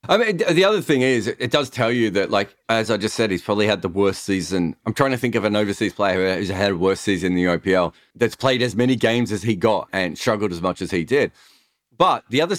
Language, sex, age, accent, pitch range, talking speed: English, male, 30-49, Australian, 100-130 Hz, 265 wpm